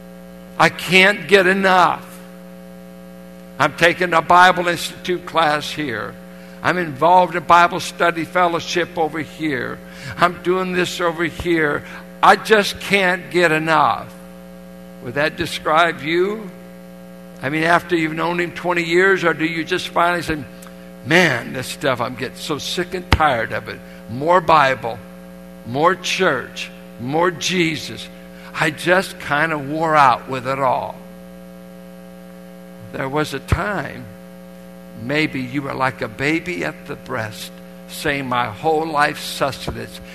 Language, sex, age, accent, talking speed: English, male, 60-79, American, 135 wpm